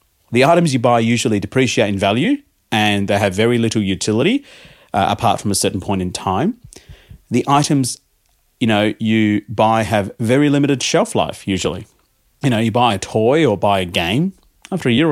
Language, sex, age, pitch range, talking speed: English, male, 30-49, 100-130 Hz, 185 wpm